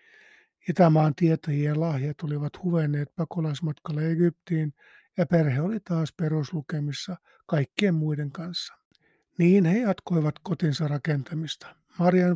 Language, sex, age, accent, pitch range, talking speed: Finnish, male, 50-69, native, 150-180 Hz, 100 wpm